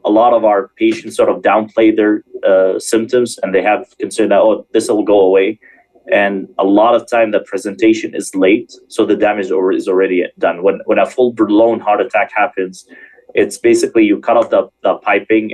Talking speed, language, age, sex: 200 wpm, English, 30-49, male